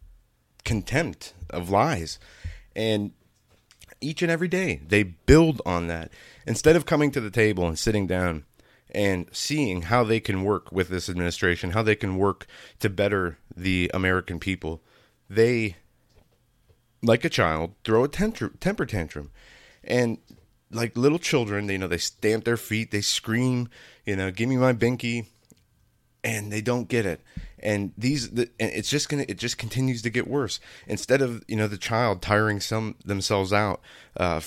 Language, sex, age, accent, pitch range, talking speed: English, male, 30-49, American, 90-120 Hz, 165 wpm